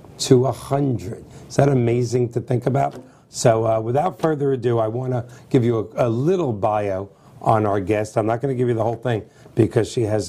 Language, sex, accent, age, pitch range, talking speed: English, male, American, 50-69, 110-130 Hz, 215 wpm